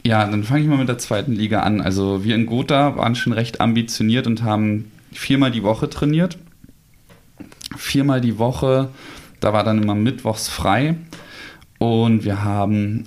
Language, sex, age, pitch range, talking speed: German, male, 10-29, 100-120 Hz, 165 wpm